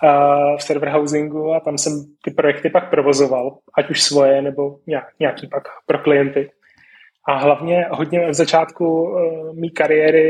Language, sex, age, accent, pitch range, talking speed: Czech, male, 20-39, native, 145-160 Hz, 145 wpm